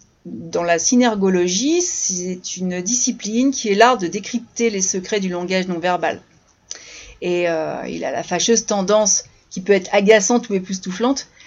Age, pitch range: 40-59, 190-245 Hz